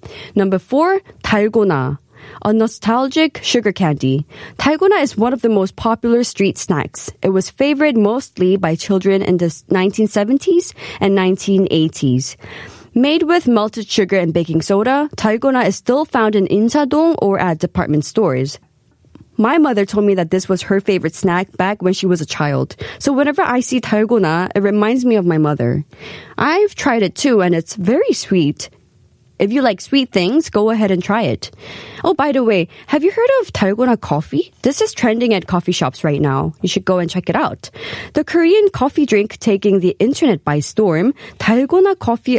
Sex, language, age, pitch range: female, Korean, 20-39, 175-245 Hz